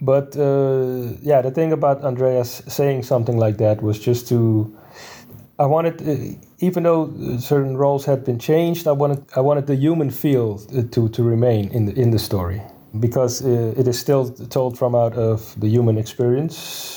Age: 30-49